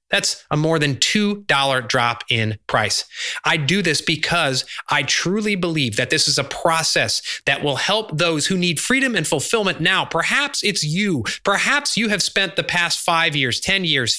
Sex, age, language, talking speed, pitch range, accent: male, 30-49, English, 180 wpm, 125-170 Hz, American